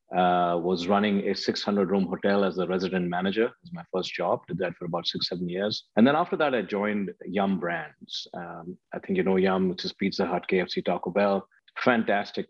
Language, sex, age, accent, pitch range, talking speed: English, male, 50-69, Indian, 95-105 Hz, 210 wpm